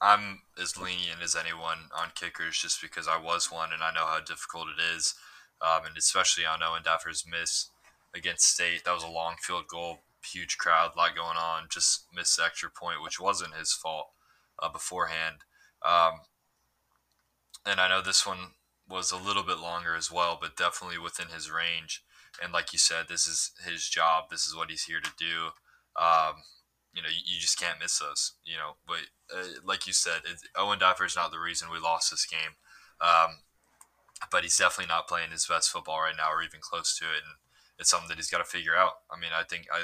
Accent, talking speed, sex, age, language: American, 210 wpm, male, 20-39, English